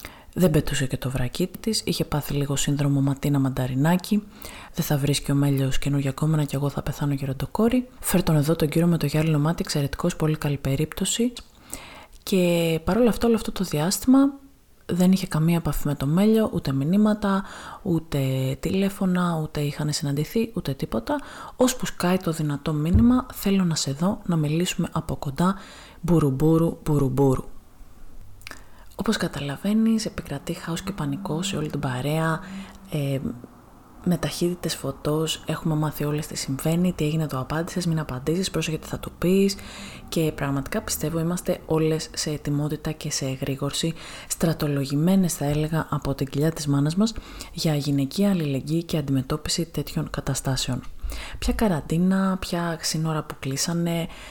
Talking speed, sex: 150 wpm, female